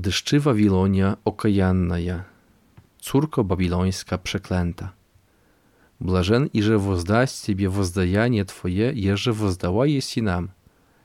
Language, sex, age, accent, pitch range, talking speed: Polish, male, 40-59, native, 90-115 Hz, 100 wpm